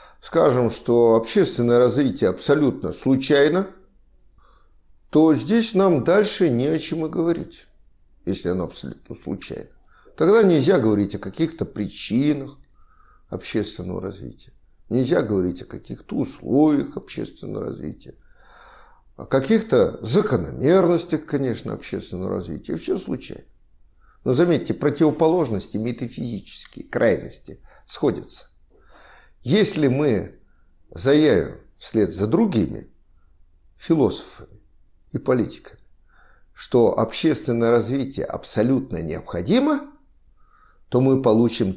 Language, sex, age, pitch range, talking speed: Russian, male, 50-69, 110-180 Hz, 95 wpm